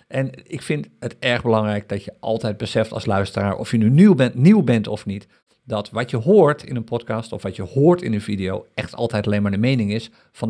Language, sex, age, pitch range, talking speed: Dutch, male, 50-69, 110-150 Hz, 245 wpm